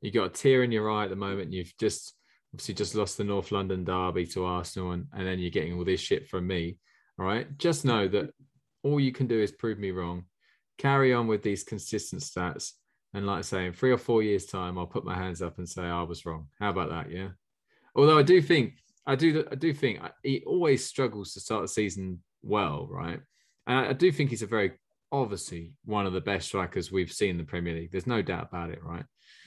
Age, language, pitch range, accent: 20-39, English, 95-130 Hz, British